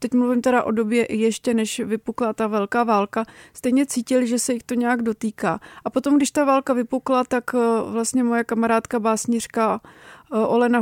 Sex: female